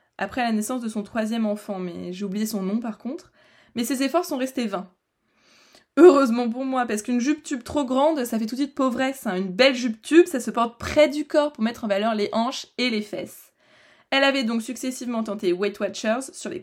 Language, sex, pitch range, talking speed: French, female, 205-250 Hz, 230 wpm